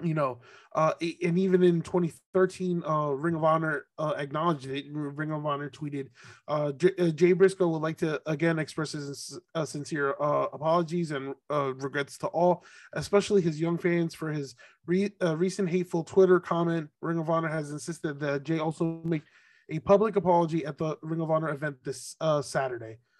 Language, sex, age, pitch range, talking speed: English, male, 20-39, 145-170 Hz, 175 wpm